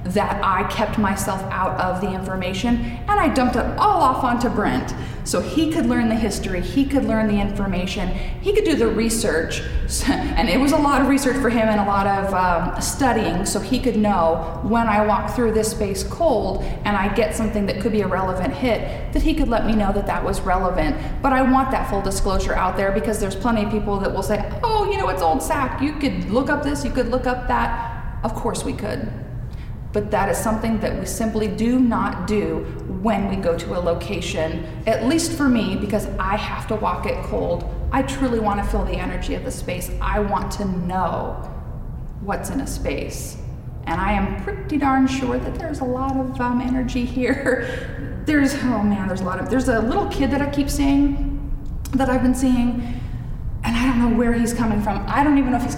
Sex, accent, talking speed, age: female, American, 220 wpm, 30-49